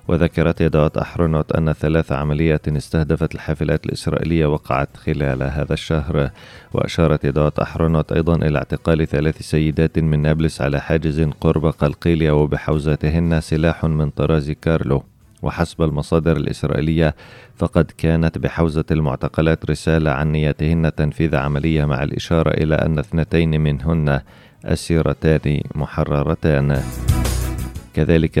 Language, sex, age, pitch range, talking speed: Arabic, male, 30-49, 75-80 Hz, 110 wpm